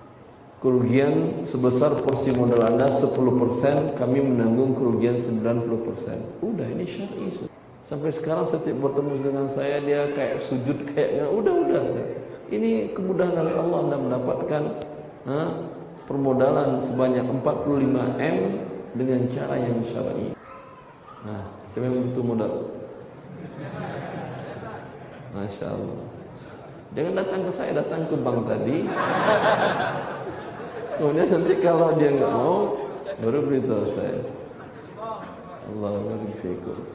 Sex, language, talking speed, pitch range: male, Indonesian, 100 wpm, 120-145 Hz